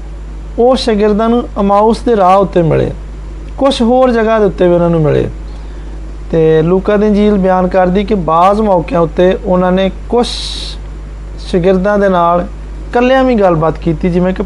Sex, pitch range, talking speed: male, 160-210 Hz, 135 wpm